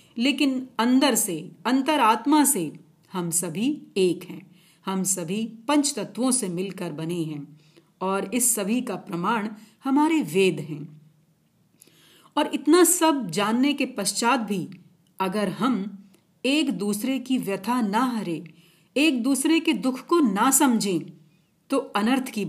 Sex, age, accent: female, 40-59, native